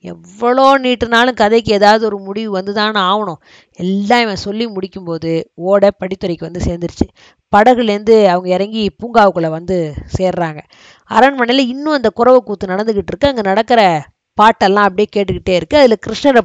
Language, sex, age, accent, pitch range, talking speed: Tamil, female, 20-39, native, 185-235 Hz, 130 wpm